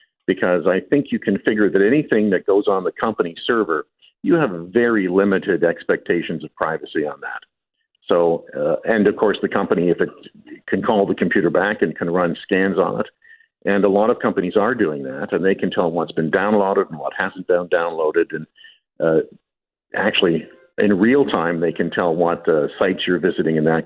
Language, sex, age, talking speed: English, male, 50-69, 200 wpm